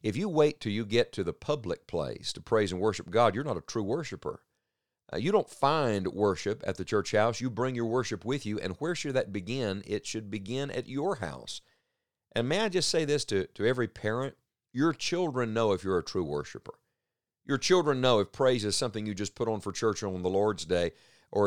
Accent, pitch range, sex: American, 100-130 Hz, male